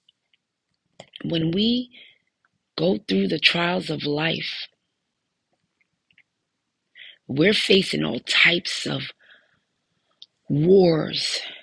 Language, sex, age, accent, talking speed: English, female, 40-59, American, 70 wpm